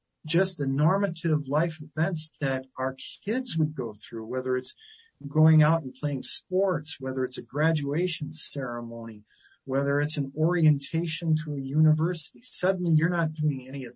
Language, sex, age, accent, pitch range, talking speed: English, male, 50-69, American, 135-165 Hz, 155 wpm